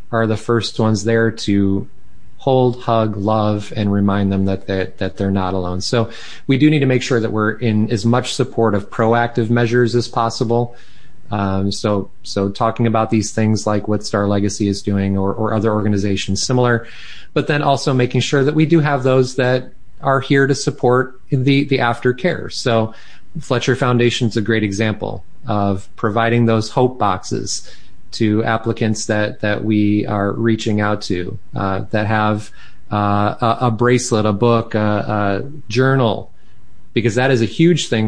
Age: 30-49